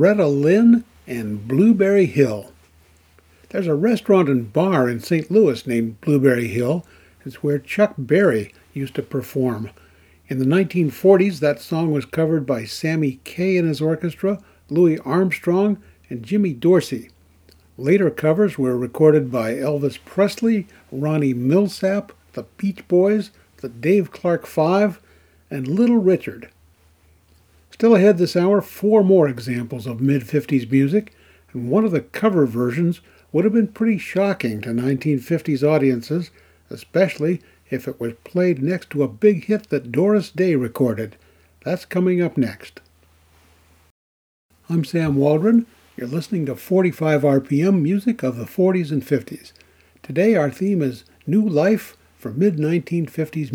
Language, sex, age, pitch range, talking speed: English, male, 60-79, 125-185 Hz, 140 wpm